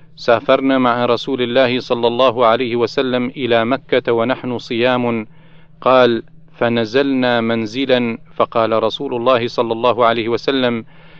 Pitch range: 115-155 Hz